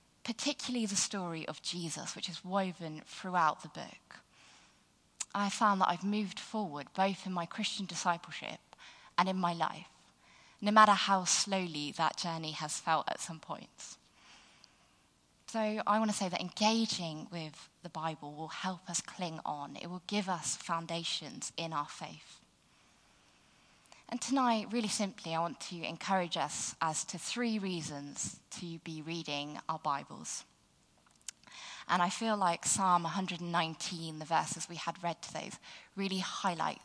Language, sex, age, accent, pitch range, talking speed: English, female, 20-39, British, 160-200 Hz, 150 wpm